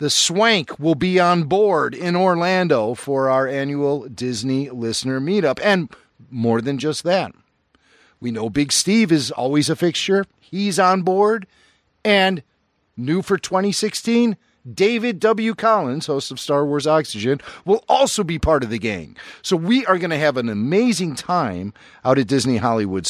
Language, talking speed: English, 160 wpm